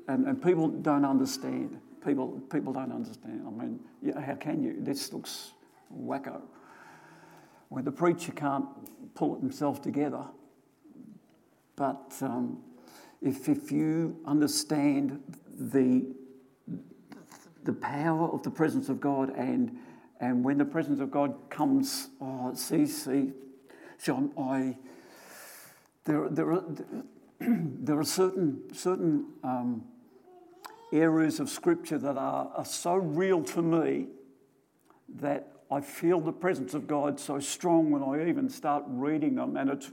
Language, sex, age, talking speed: English, male, 60-79, 130 wpm